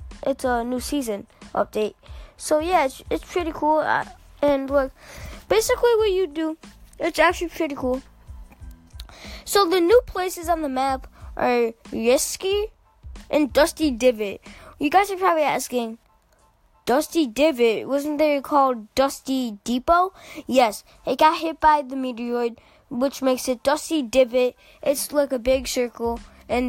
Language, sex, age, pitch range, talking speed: English, female, 10-29, 240-305 Hz, 145 wpm